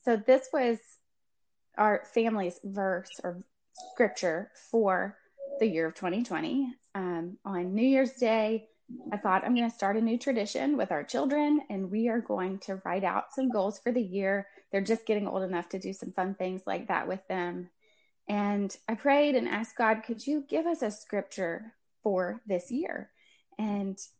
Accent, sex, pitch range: American, female, 195-255 Hz